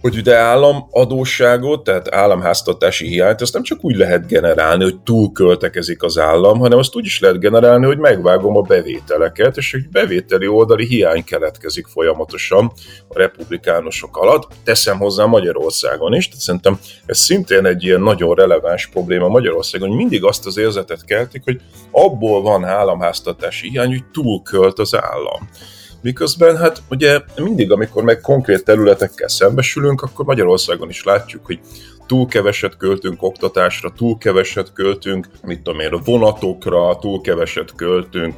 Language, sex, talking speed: Hungarian, male, 150 wpm